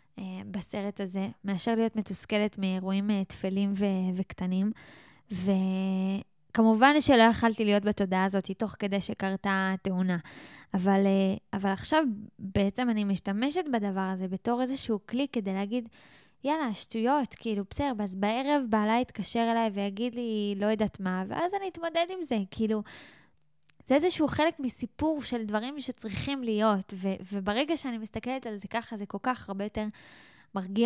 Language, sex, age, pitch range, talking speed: Hebrew, female, 10-29, 195-230 Hz, 140 wpm